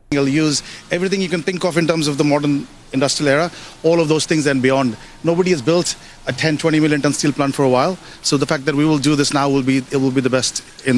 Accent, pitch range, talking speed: native, 165-260 Hz, 275 wpm